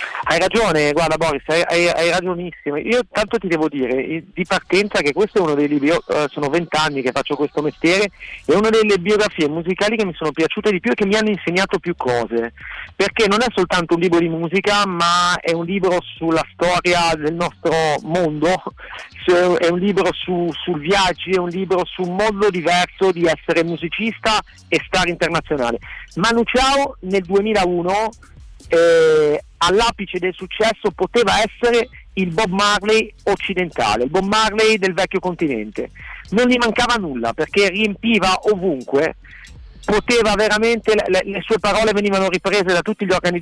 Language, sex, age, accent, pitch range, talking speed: Italian, male, 50-69, native, 165-210 Hz, 165 wpm